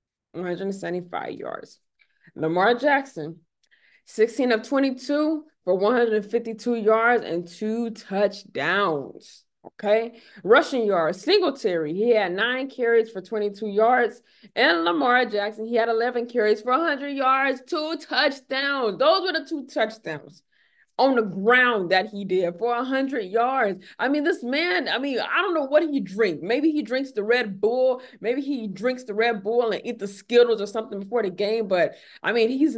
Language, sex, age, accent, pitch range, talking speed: English, female, 20-39, American, 210-275 Hz, 160 wpm